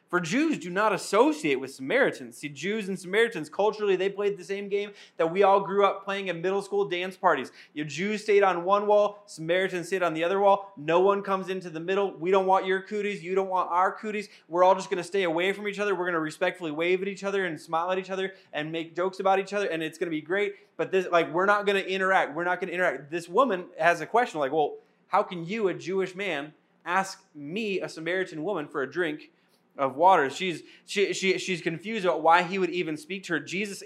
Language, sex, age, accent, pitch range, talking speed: English, male, 20-39, American, 170-205 Hz, 250 wpm